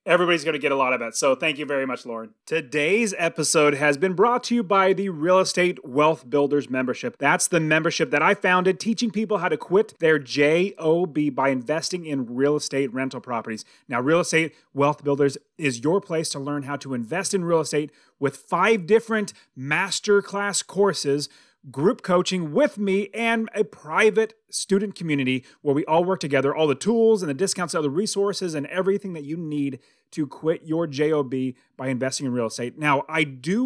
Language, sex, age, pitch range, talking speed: English, male, 30-49, 140-195 Hz, 195 wpm